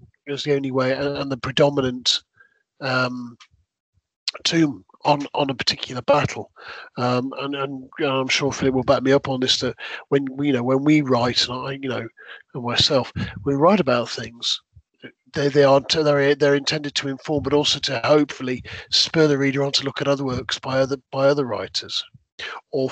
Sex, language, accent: male, English, British